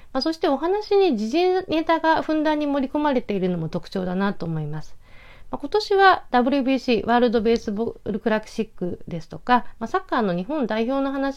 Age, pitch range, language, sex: 40-59, 175-280 Hz, Japanese, female